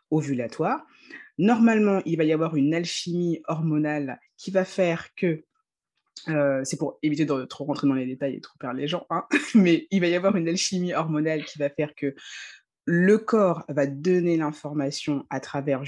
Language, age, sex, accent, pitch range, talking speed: French, 20-39, female, French, 140-195 Hz, 180 wpm